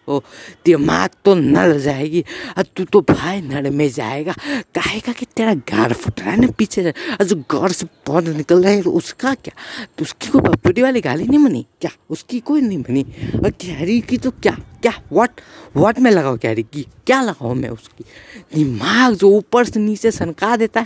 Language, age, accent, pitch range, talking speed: Hindi, 50-69, native, 155-225 Hz, 195 wpm